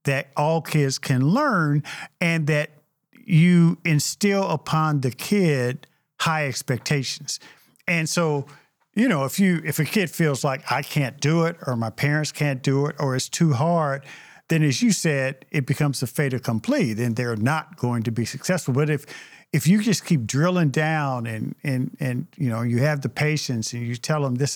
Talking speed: 190 wpm